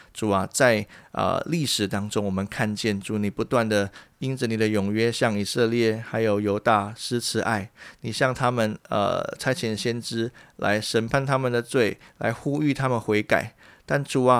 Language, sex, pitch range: Chinese, male, 100-120 Hz